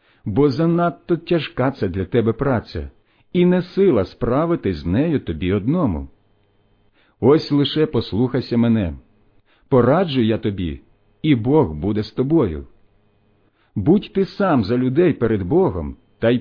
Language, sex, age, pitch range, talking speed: Ukrainian, male, 50-69, 100-150 Hz, 130 wpm